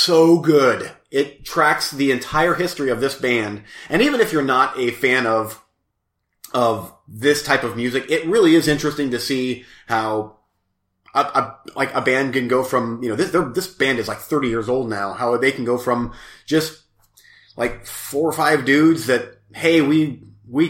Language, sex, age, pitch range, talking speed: English, male, 30-49, 115-150 Hz, 185 wpm